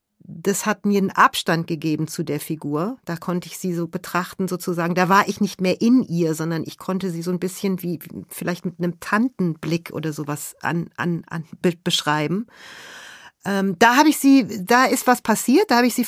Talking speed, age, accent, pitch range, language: 210 wpm, 40-59, German, 175-220 Hz, German